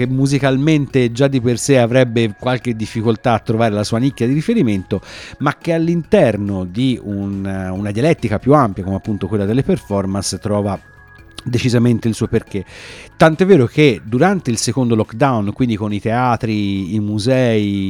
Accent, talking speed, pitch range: native, 155 wpm, 100-125 Hz